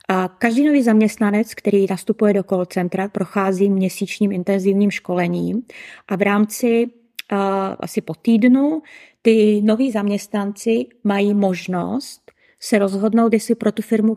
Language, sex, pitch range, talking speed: Czech, female, 195-230 Hz, 130 wpm